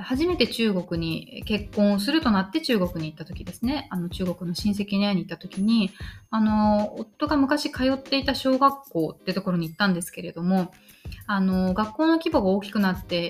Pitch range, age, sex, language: 175-235 Hz, 20-39, female, Japanese